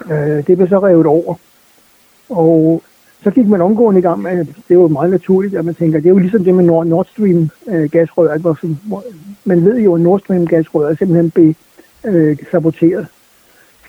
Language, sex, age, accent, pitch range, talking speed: Danish, male, 60-79, native, 165-190 Hz, 175 wpm